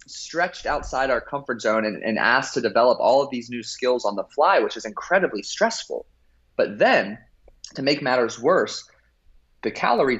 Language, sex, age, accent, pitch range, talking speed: English, male, 30-49, American, 110-140 Hz, 175 wpm